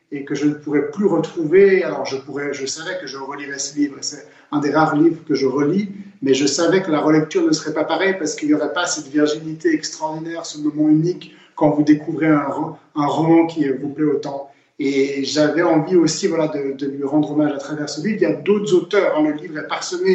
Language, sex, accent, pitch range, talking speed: French, male, French, 150-185 Hz, 235 wpm